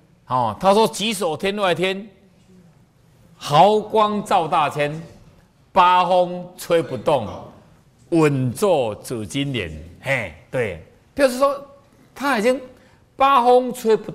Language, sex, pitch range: Chinese, male, 120-195 Hz